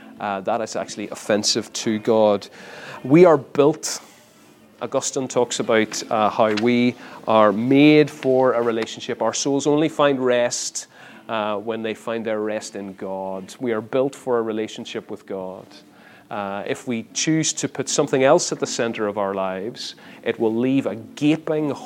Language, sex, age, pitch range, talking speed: English, male, 30-49, 105-130 Hz, 165 wpm